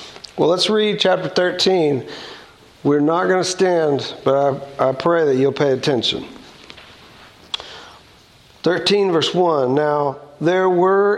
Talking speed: 130 wpm